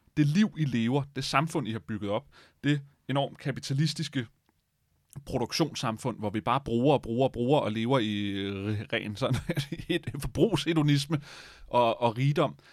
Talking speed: 145 wpm